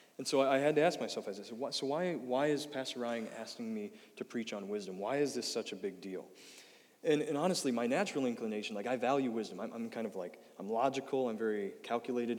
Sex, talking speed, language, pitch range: male, 235 wpm, English, 115-140 Hz